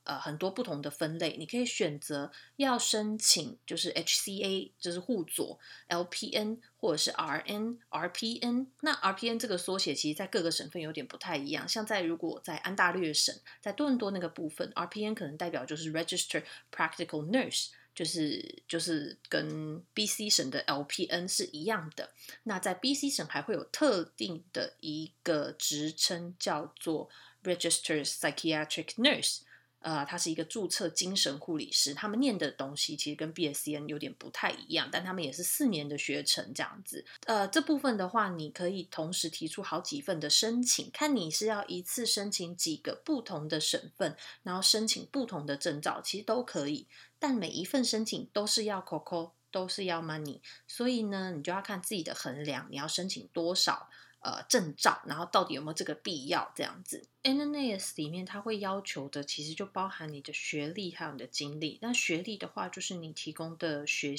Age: 30-49